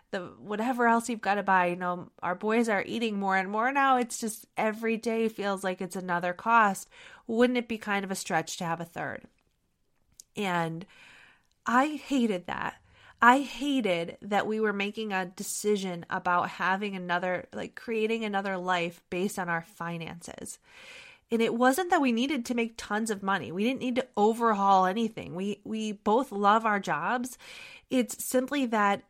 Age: 30-49